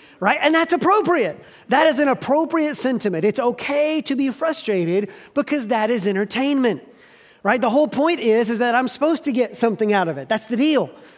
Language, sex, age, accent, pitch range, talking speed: English, male, 30-49, American, 215-285 Hz, 195 wpm